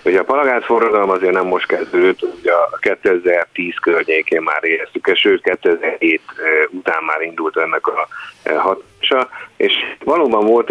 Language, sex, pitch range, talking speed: Hungarian, male, 360-430 Hz, 130 wpm